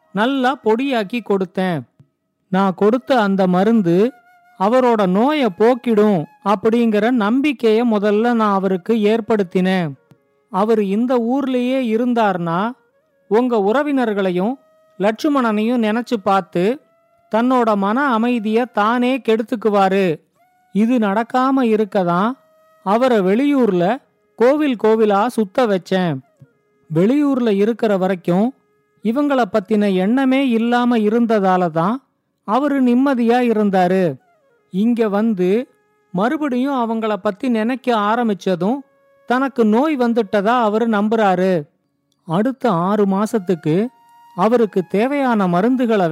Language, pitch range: Tamil, 195-245 Hz